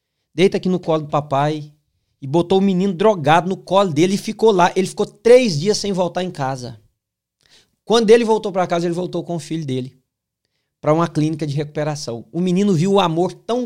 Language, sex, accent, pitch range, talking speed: Portuguese, male, Brazilian, 150-220 Hz, 205 wpm